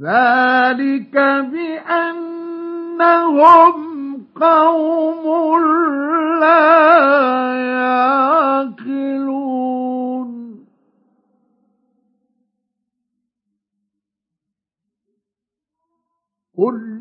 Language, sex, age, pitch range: Arabic, male, 50-69, 205-285 Hz